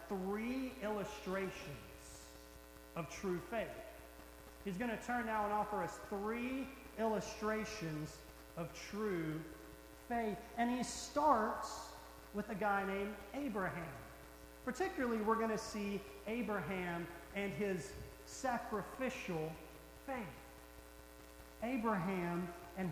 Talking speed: 100 wpm